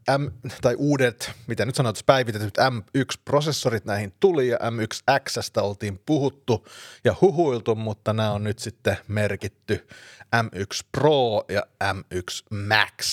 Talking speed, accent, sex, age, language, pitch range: 125 wpm, native, male, 30-49, Finnish, 105-120 Hz